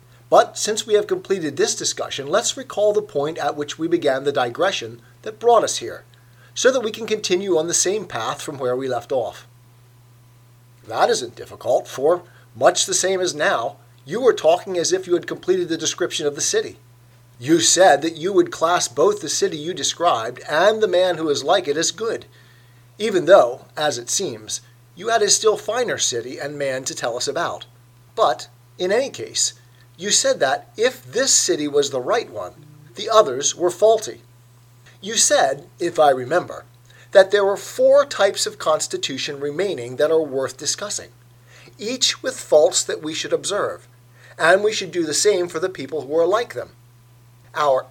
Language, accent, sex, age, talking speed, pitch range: English, American, male, 40-59, 190 wpm, 120-205 Hz